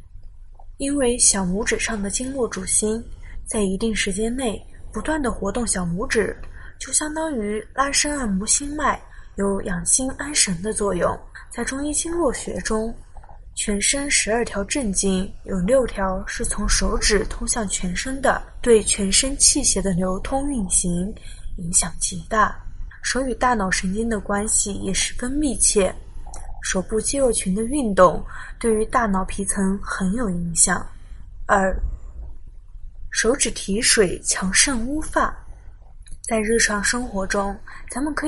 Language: Chinese